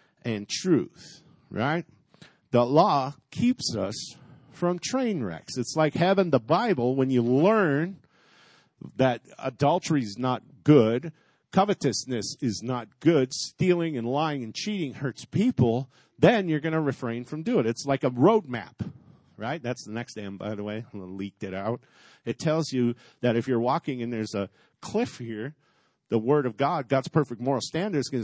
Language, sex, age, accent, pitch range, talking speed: English, male, 50-69, American, 120-165 Hz, 170 wpm